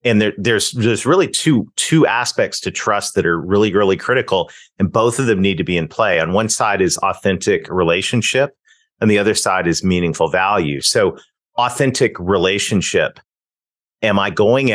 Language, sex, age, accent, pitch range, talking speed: English, male, 40-59, American, 95-120 Hz, 175 wpm